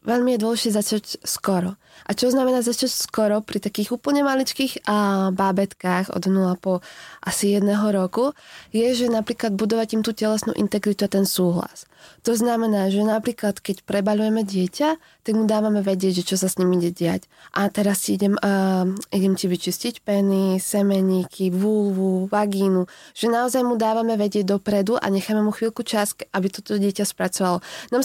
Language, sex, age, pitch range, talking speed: Slovak, female, 20-39, 195-220 Hz, 165 wpm